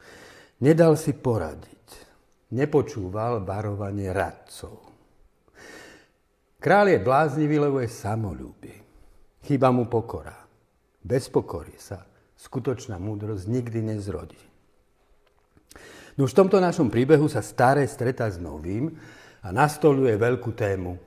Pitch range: 105-140 Hz